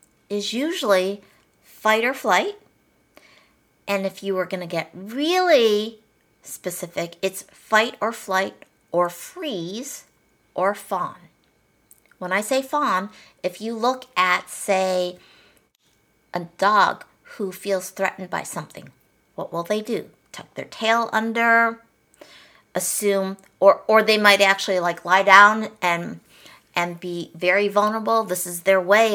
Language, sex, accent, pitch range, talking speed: English, female, American, 180-225 Hz, 130 wpm